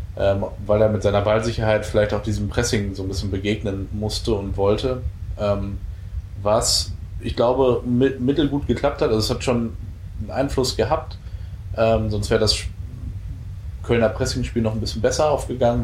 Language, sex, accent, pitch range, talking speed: German, male, German, 95-110 Hz, 150 wpm